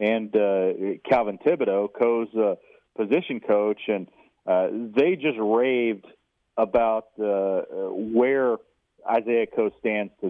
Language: English